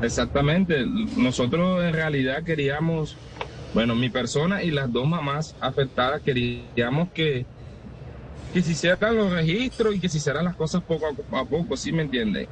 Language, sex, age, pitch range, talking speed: Spanish, male, 30-49, 120-150 Hz, 155 wpm